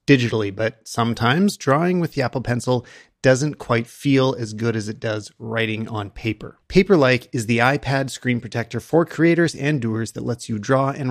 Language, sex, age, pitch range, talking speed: English, male, 30-49, 115-145 Hz, 185 wpm